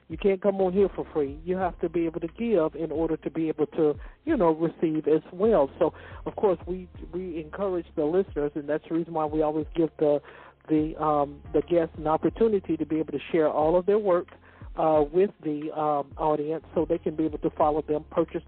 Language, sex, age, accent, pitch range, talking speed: English, male, 60-79, American, 145-175 Hz, 230 wpm